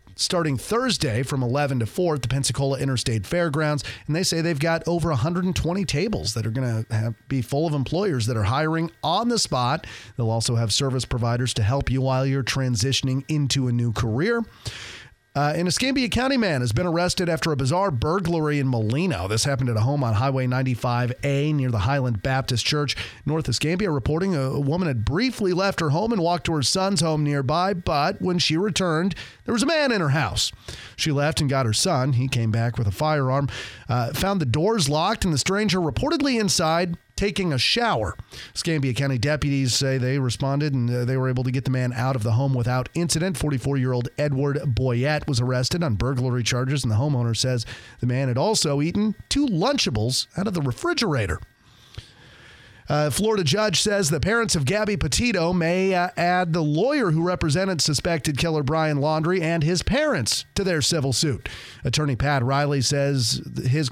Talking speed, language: 190 wpm, English